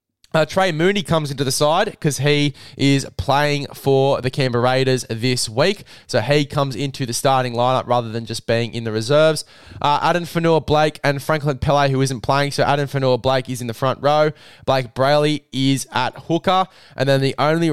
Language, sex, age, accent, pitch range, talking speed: English, male, 20-39, Australian, 120-145 Hz, 200 wpm